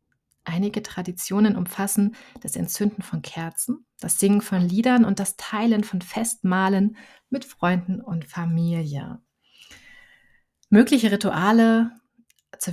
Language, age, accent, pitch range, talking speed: German, 30-49, German, 170-210 Hz, 110 wpm